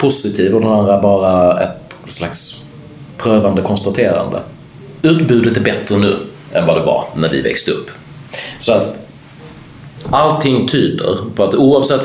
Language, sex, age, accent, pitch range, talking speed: Swedish, male, 30-49, native, 100-135 Hz, 140 wpm